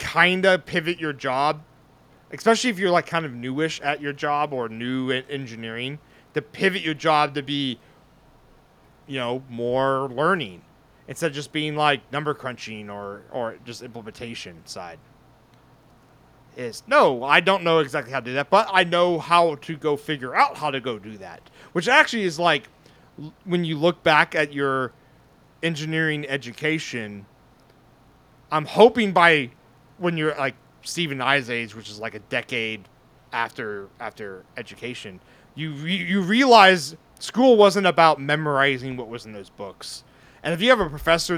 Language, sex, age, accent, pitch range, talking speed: English, male, 30-49, American, 130-170 Hz, 160 wpm